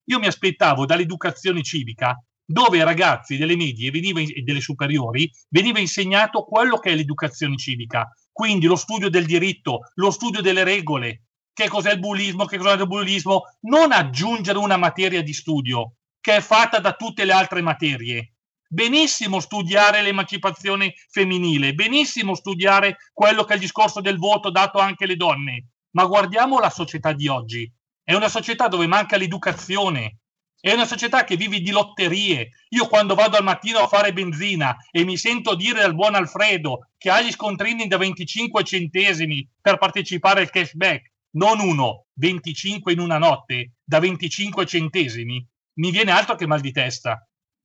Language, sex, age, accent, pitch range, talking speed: Italian, male, 40-59, native, 155-200 Hz, 160 wpm